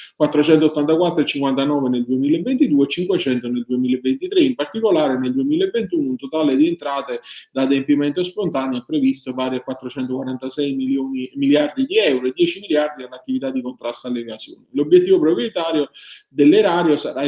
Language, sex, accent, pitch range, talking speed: Italian, male, native, 130-175 Hz, 135 wpm